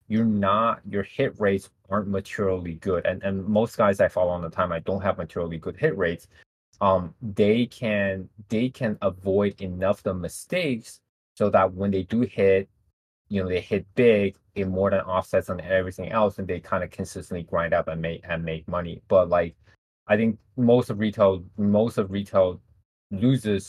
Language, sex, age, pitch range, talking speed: English, male, 20-39, 90-105 Hz, 190 wpm